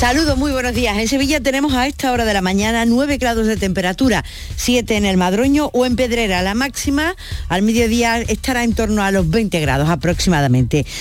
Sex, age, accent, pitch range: female, 50-69, Spanish, 190-245 Hz